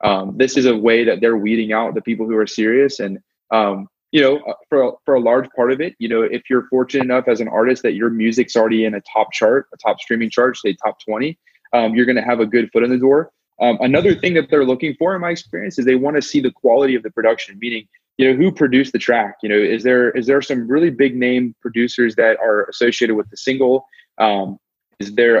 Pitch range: 110-135 Hz